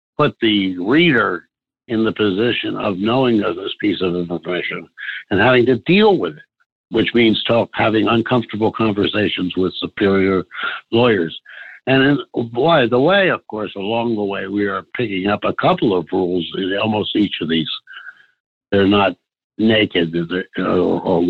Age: 60-79